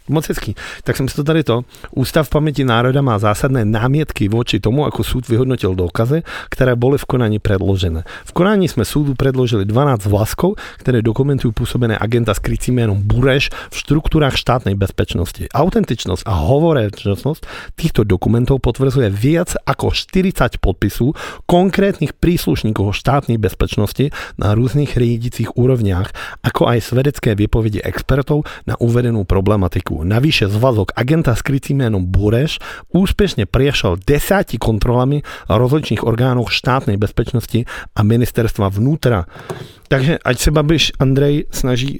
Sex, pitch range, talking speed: male, 105-135 Hz, 130 wpm